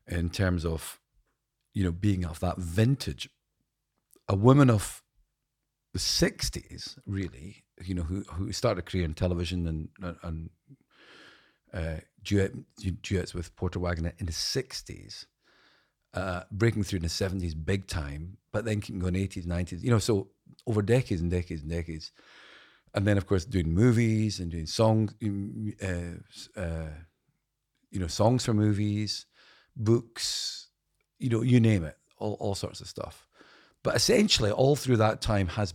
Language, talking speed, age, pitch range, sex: English, 160 wpm, 40-59, 90-110 Hz, male